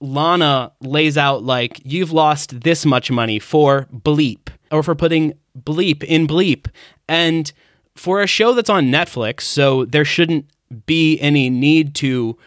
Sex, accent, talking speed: male, American, 150 wpm